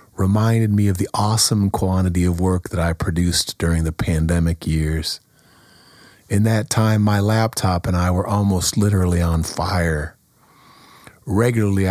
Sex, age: male, 40-59